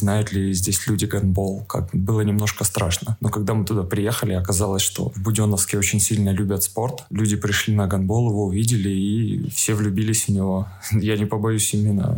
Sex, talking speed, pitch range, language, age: male, 180 wpm, 100-115 Hz, Russian, 20-39